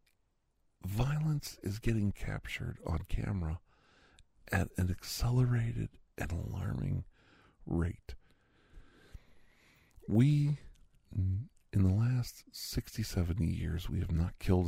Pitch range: 80-105 Hz